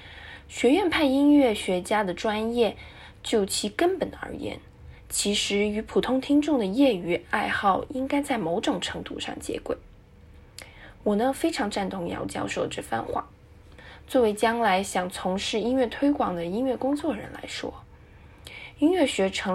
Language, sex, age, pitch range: Chinese, female, 10-29, 185-265 Hz